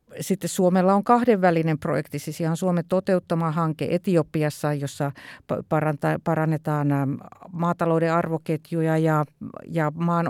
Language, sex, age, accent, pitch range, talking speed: Finnish, female, 50-69, native, 160-185 Hz, 110 wpm